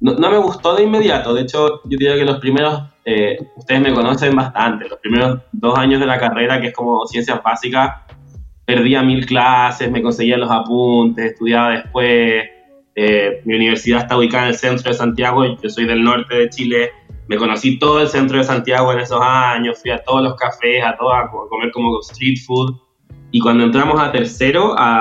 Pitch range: 120-135 Hz